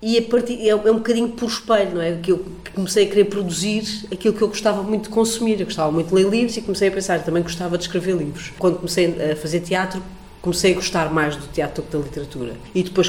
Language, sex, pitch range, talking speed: Portuguese, female, 165-210 Hz, 255 wpm